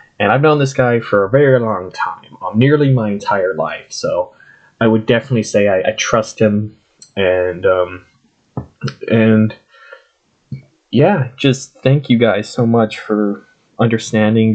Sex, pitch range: male, 100-120 Hz